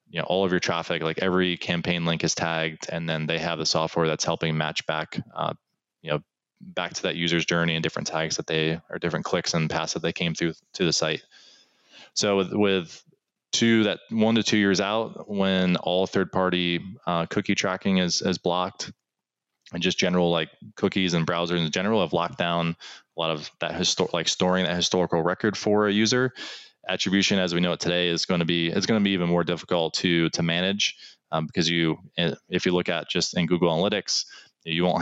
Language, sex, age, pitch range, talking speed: English, male, 20-39, 80-90 Hz, 215 wpm